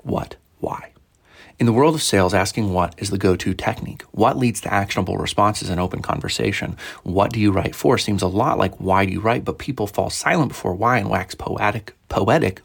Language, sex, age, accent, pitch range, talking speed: English, male, 30-49, American, 95-120 Hz, 215 wpm